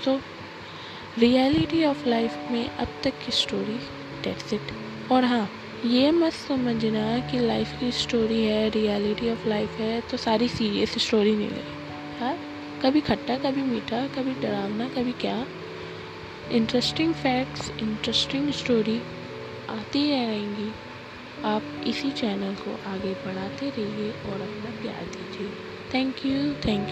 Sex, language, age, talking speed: female, Hindi, 10-29, 135 wpm